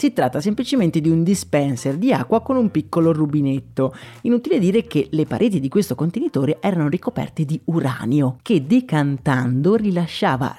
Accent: native